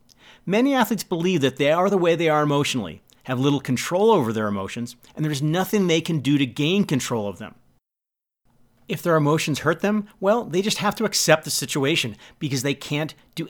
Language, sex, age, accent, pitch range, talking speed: English, male, 40-59, American, 125-175 Hz, 200 wpm